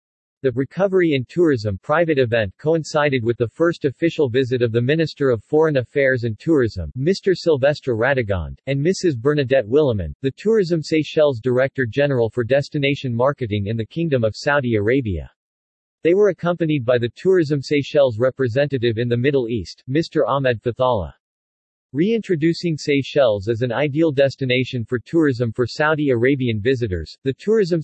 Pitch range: 120-150 Hz